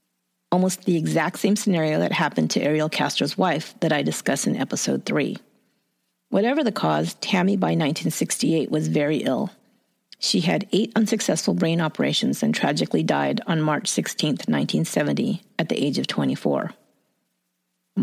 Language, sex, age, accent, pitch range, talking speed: English, female, 40-59, American, 155-205 Hz, 145 wpm